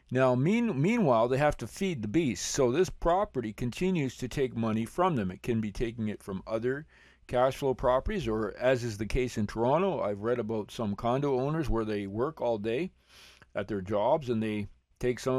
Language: English